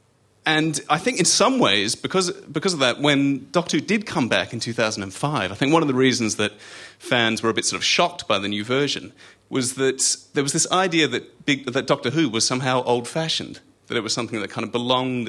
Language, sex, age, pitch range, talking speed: English, male, 30-49, 100-130 Hz, 230 wpm